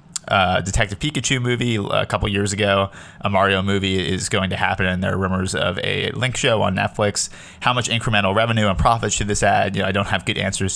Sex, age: male, 20-39